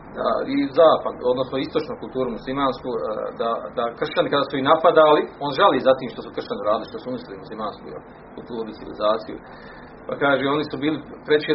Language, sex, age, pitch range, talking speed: Croatian, male, 40-59, 130-160 Hz, 175 wpm